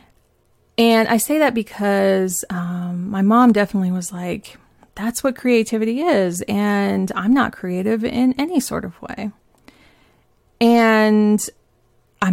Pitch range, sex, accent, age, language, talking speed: 195-230 Hz, female, American, 30-49, English, 125 wpm